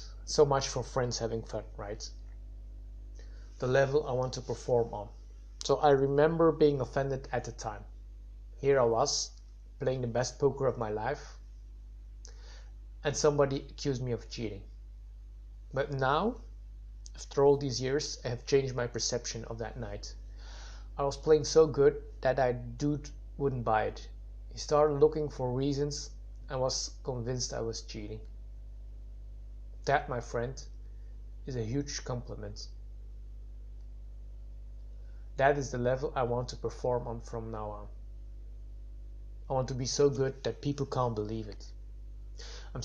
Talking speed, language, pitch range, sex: 145 wpm, English, 110-135 Hz, male